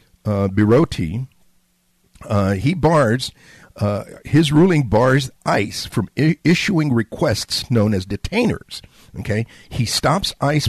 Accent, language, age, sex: American, English, 50-69, male